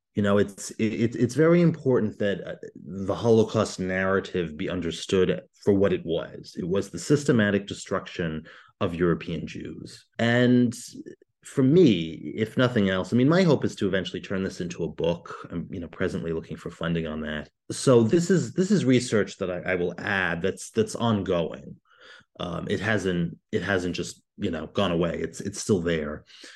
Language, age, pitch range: English, 30-49, 90-115 Hz